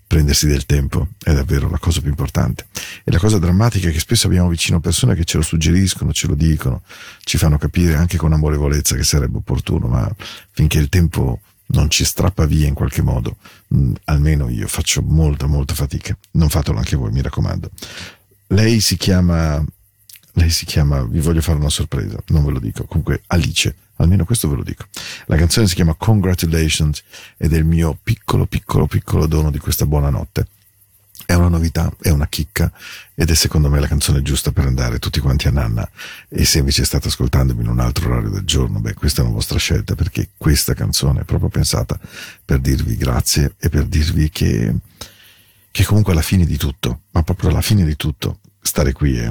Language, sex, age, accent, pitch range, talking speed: Spanish, male, 40-59, Italian, 75-95 Hz, 195 wpm